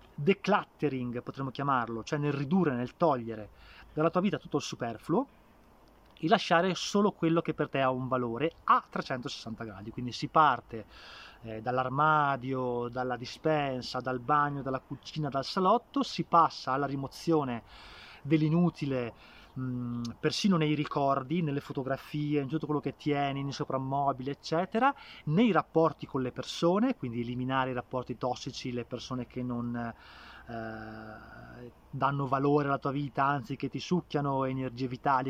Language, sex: Italian, male